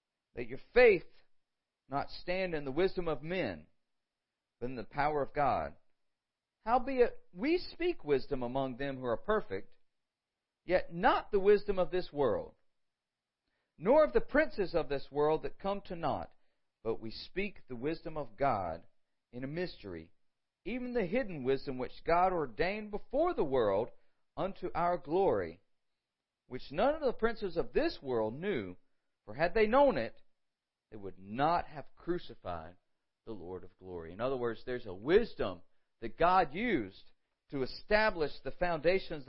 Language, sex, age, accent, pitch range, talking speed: English, male, 50-69, American, 125-205 Hz, 155 wpm